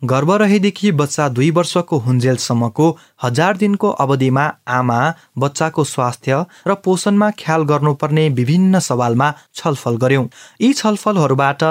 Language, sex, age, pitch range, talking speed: English, male, 30-49, 125-170 Hz, 140 wpm